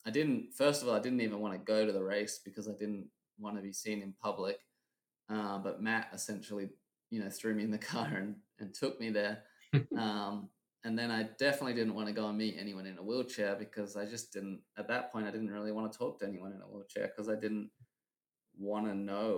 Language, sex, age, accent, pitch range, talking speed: English, male, 20-39, Australian, 100-110 Hz, 240 wpm